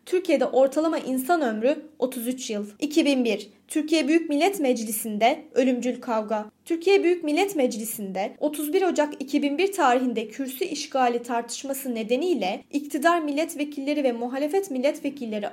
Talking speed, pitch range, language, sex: 115 wpm, 230-300 Hz, Turkish, female